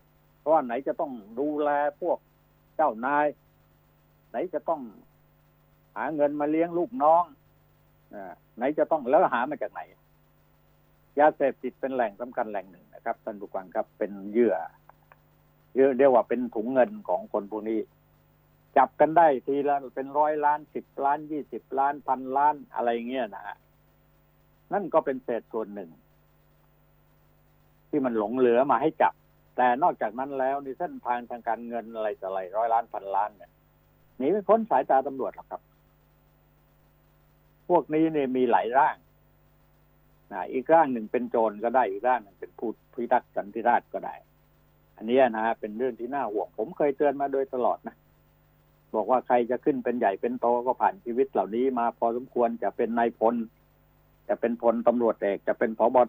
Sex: male